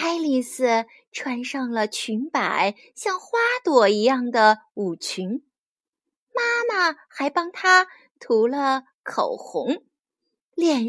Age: 20-39